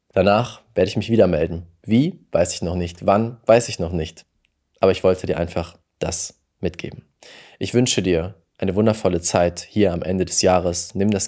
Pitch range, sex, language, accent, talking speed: 85-100 Hz, male, German, German, 190 wpm